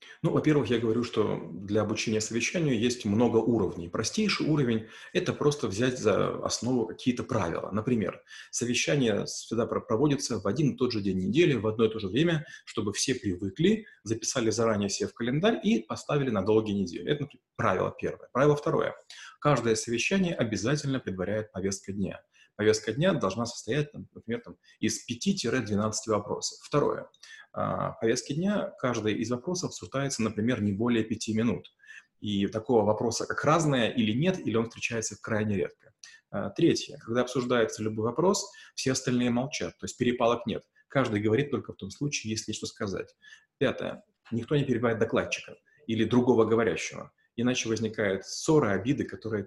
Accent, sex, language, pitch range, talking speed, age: native, male, Russian, 110-135 Hz, 160 wpm, 30-49